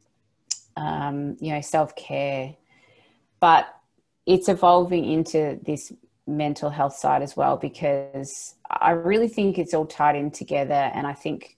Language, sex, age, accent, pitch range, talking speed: English, female, 30-49, Australian, 145-170 Hz, 135 wpm